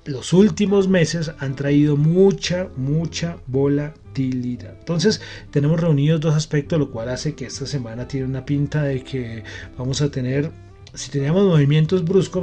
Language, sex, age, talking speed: Spanish, male, 30-49, 150 wpm